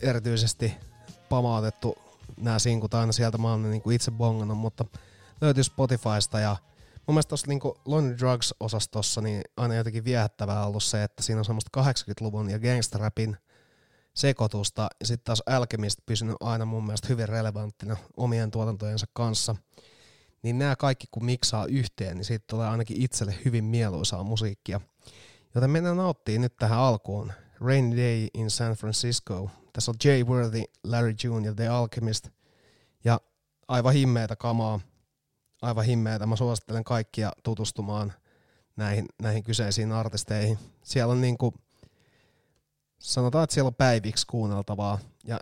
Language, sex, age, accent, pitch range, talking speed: Finnish, male, 30-49, native, 105-120 Hz, 140 wpm